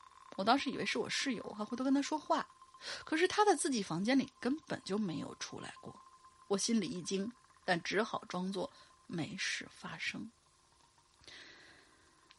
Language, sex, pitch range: Chinese, female, 215-290 Hz